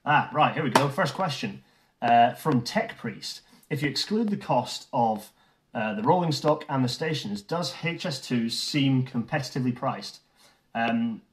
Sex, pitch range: male, 120-155 Hz